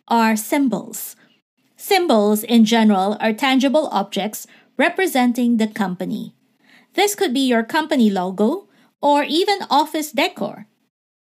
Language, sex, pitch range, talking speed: English, female, 220-295 Hz, 110 wpm